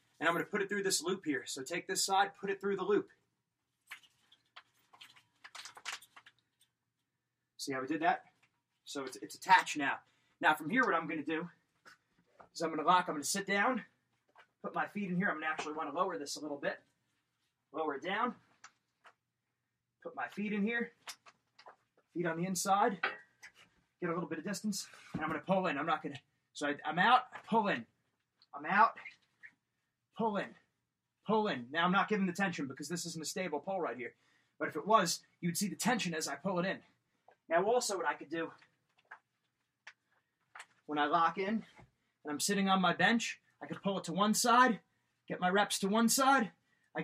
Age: 30-49